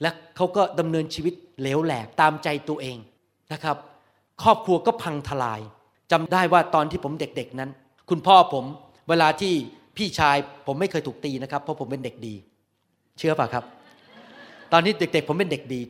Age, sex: 30-49, male